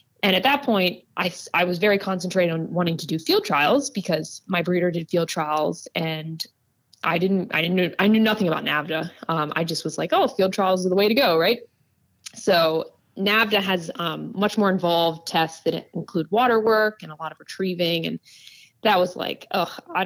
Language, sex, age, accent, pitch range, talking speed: English, female, 20-39, American, 155-200 Hz, 205 wpm